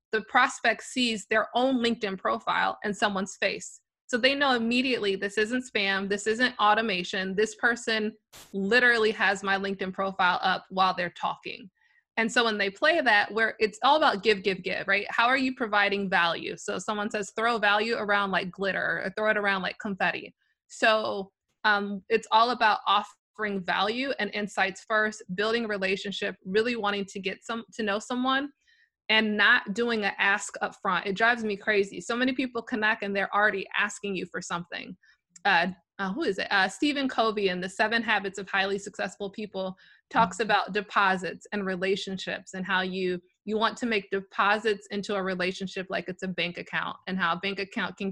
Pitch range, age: 195-225 Hz, 20-39